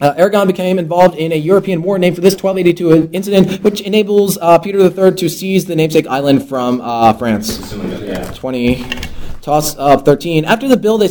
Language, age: English, 20-39